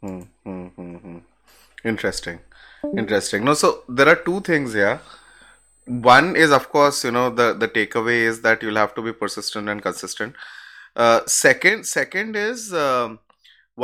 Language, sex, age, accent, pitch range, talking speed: English, male, 20-39, Indian, 110-145 Hz, 155 wpm